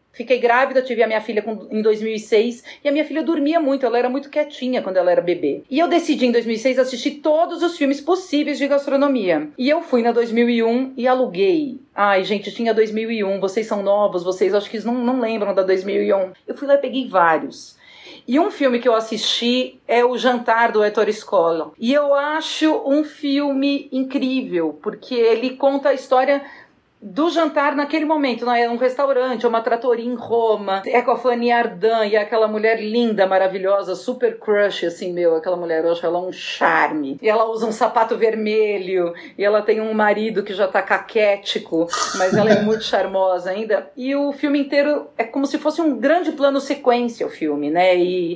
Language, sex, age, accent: Portuguese, female, 40-59, Brazilian